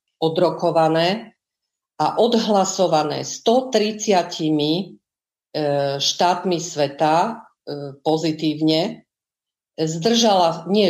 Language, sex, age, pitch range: Slovak, female, 50-69, 150-185 Hz